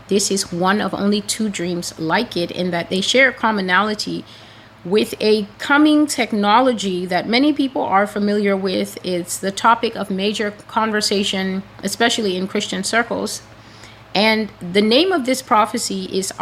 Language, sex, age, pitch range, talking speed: English, female, 30-49, 170-210 Hz, 150 wpm